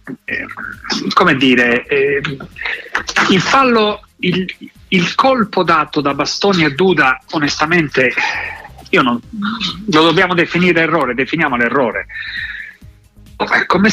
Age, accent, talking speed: 40-59, native, 95 wpm